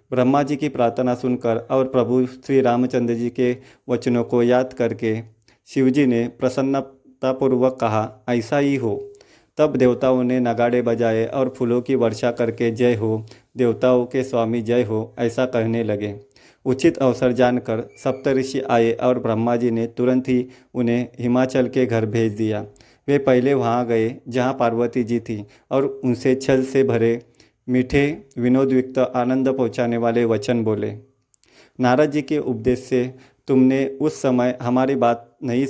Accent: native